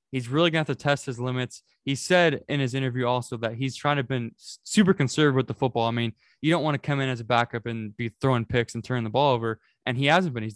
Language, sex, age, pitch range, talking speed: English, male, 20-39, 115-145 Hz, 290 wpm